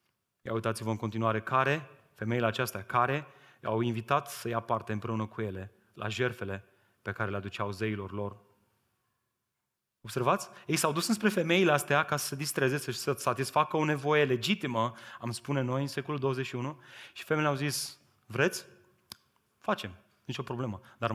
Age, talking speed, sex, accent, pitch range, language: 30-49, 160 wpm, male, native, 110-140 Hz, Romanian